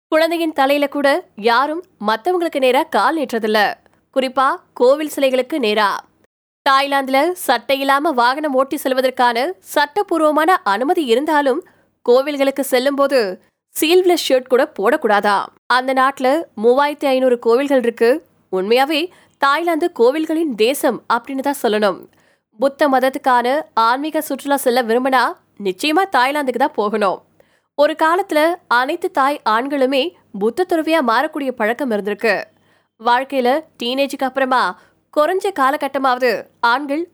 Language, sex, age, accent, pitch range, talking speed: Tamil, female, 20-39, native, 245-310 Hz, 80 wpm